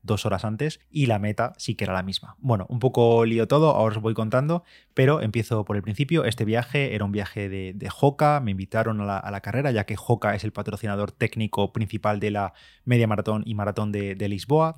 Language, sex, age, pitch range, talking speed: Spanish, male, 20-39, 105-120 Hz, 225 wpm